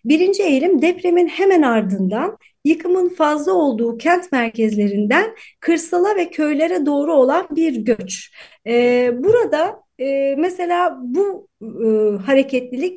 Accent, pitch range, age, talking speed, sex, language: native, 230-320 Hz, 40-59, 110 wpm, female, Turkish